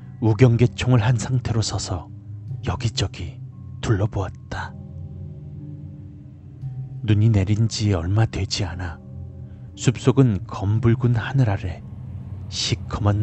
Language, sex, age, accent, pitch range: Korean, male, 40-59, native, 100-125 Hz